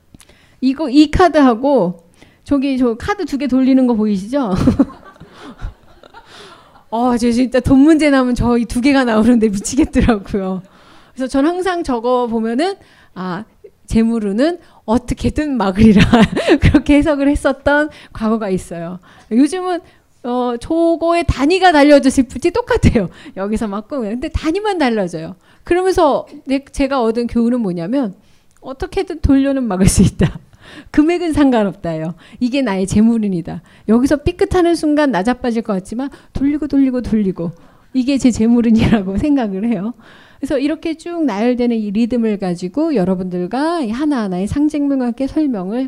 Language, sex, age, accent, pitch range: Korean, female, 30-49, native, 210-290 Hz